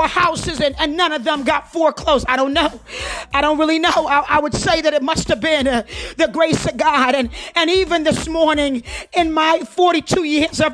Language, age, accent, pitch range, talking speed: English, 40-59, American, 285-330 Hz, 220 wpm